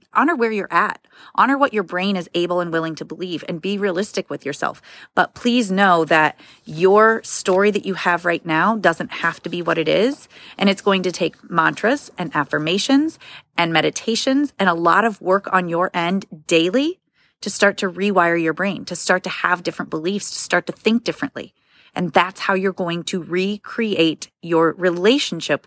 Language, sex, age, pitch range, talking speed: English, female, 30-49, 170-210 Hz, 190 wpm